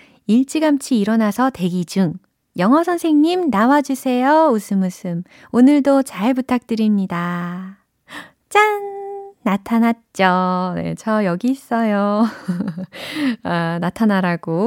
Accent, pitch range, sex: native, 165-230 Hz, female